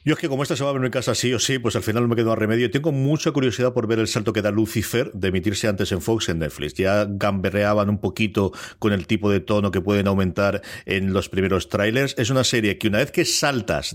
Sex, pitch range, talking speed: male, 95-120 Hz, 270 wpm